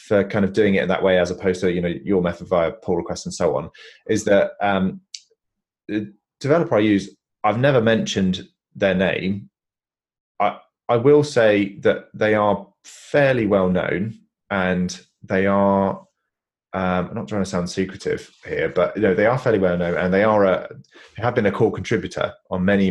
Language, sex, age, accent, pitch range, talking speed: English, male, 30-49, British, 90-105 Hz, 195 wpm